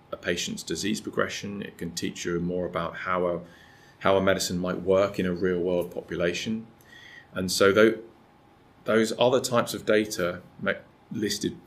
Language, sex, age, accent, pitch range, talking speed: Czech, male, 30-49, British, 85-100 Hz, 150 wpm